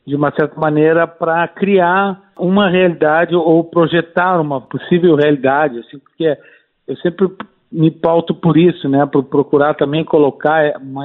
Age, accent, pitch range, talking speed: 50-69, Brazilian, 150-175 Hz, 145 wpm